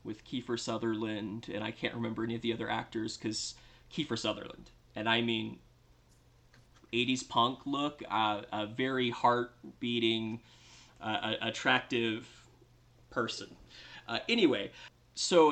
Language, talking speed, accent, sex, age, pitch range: English, 125 wpm, American, male, 30-49, 110-125 Hz